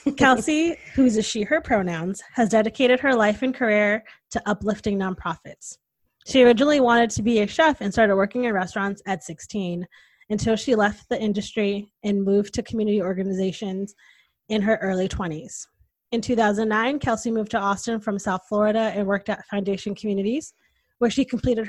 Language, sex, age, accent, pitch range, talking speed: English, female, 20-39, American, 200-235 Hz, 165 wpm